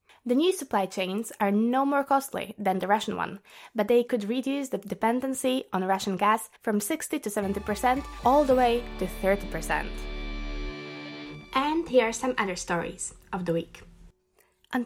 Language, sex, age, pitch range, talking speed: Slovak, female, 20-39, 195-260 Hz, 160 wpm